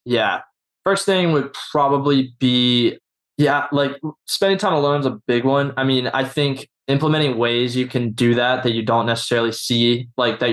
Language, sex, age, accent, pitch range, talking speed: English, male, 20-39, American, 115-135 Hz, 180 wpm